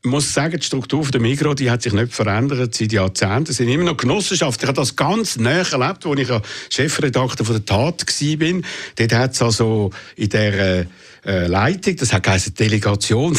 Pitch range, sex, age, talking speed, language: 115-155 Hz, male, 60-79, 195 wpm, German